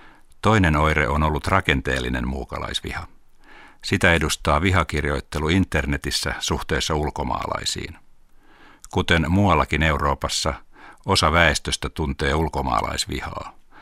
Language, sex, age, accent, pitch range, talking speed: Finnish, male, 60-79, native, 70-85 Hz, 85 wpm